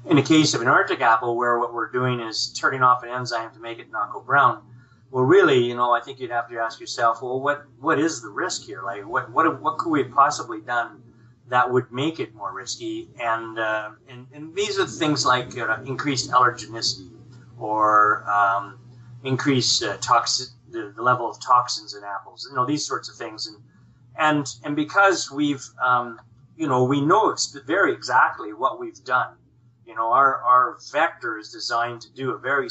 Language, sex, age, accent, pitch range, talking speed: English, male, 30-49, American, 115-140 Hz, 205 wpm